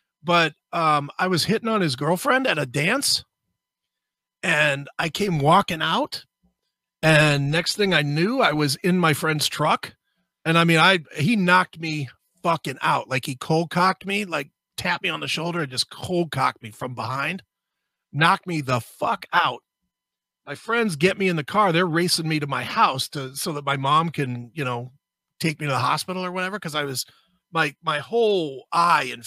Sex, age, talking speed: male, 40-59, 195 wpm